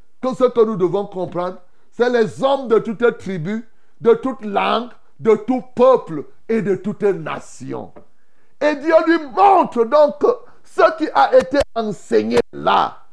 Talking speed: 160 wpm